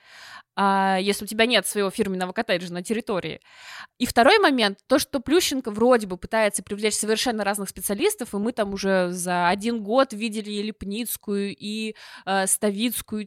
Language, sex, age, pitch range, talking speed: Russian, female, 20-39, 205-255 Hz, 160 wpm